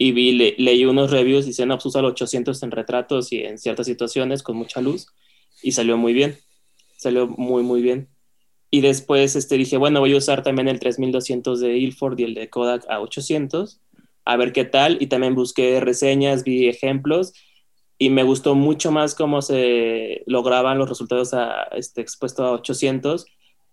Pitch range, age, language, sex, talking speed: 120-140 Hz, 20-39, Spanish, male, 185 wpm